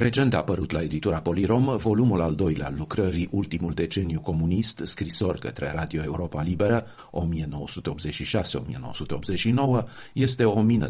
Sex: male